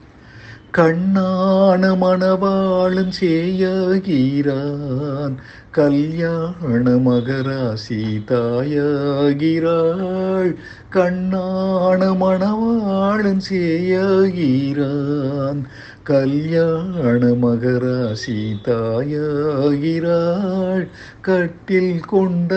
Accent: native